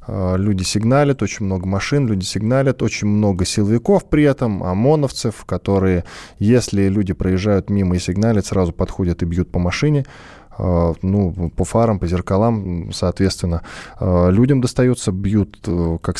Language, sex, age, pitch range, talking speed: Russian, male, 20-39, 90-115 Hz, 135 wpm